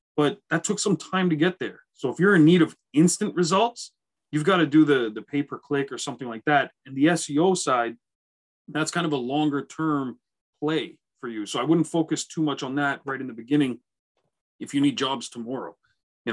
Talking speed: 220 wpm